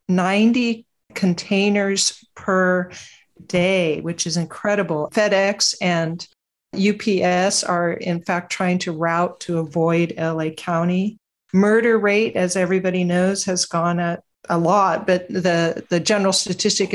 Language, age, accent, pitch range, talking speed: English, 50-69, American, 175-195 Hz, 125 wpm